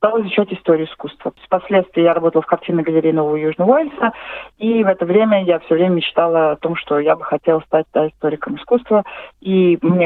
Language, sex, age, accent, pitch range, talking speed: Russian, female, 30-49, native, 160-205 Hz, 190 wpm